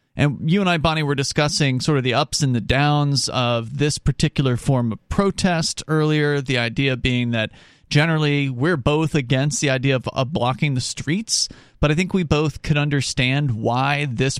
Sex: male